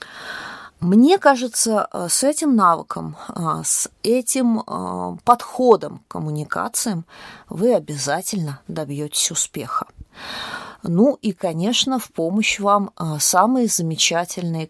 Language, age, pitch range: Russian, 20-39, 160-230 Hz